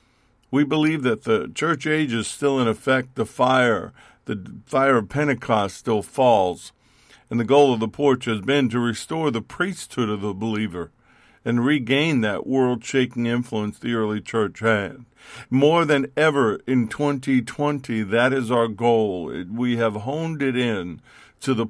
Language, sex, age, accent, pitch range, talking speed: English, male, 50-69, American, 110-135 Hz, 160 wpm